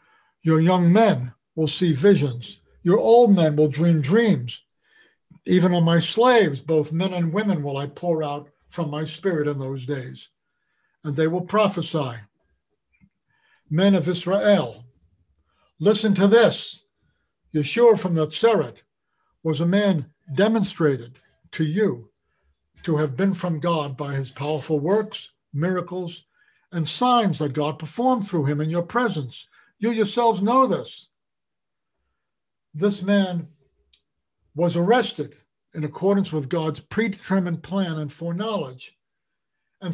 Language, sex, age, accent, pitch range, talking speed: English, male, 60-79, American, 150-205 Hz, 130 wpm